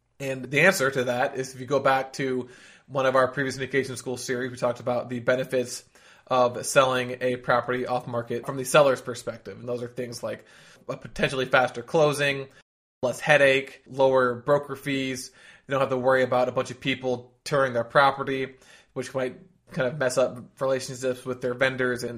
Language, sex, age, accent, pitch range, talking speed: English, male, 20-39, American, 125-140 Hz, 190 wpm